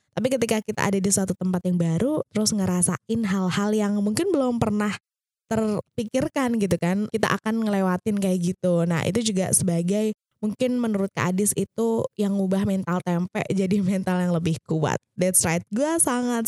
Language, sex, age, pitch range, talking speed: Indonesian, female, 20-39, 175-210 Hz, 165 wpm